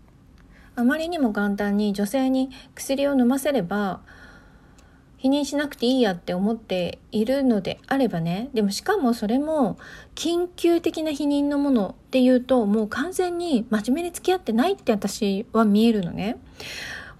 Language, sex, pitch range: Japanese, female, 195-270 Hz